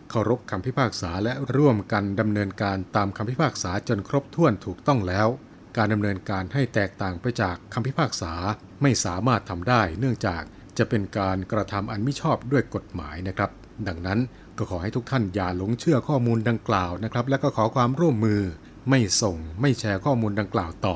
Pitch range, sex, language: 100-125 Hz, male, Thai